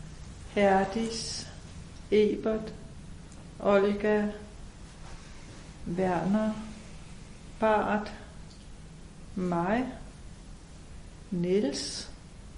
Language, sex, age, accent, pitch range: Danish, female, 60-79, native, 185-215 Hz